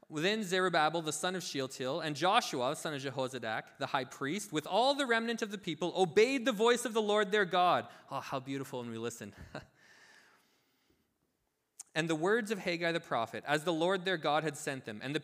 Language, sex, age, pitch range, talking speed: English, male, 20-39, 140-195 Hz, 210 wpm